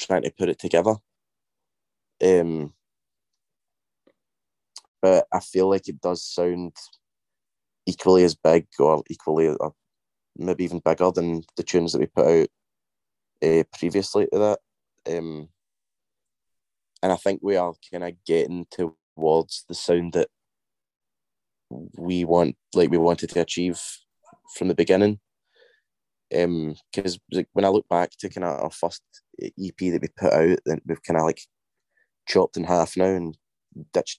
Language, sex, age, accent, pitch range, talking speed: English, male, 20-39, British, 80-95 Hz, 145 wpm